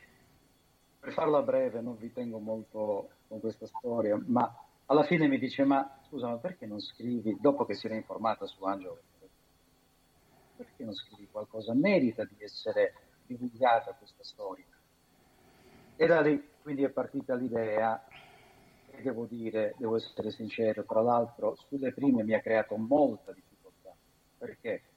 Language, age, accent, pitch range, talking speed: Italian, 50-69, native, 110-150 Hz, 145 wpm